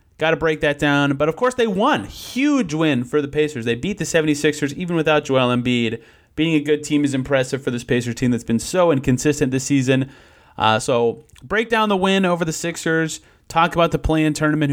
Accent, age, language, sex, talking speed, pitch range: American, 30-49, English, male, 215 wpm, 135-175 Hz